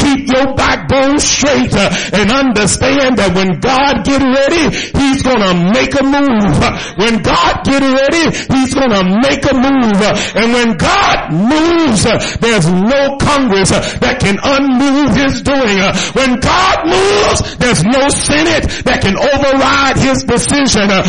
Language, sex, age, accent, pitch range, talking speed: English, male, 50-69, American, 215-275 Hz, 145 wpm